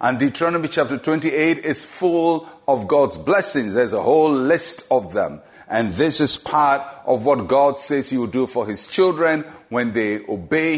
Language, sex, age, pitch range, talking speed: English, male, 50-69, 130-165 Hz, 180 wpm